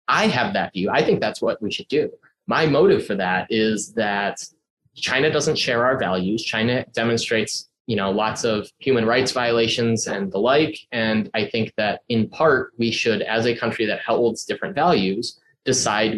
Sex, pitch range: male, 110-135 Hz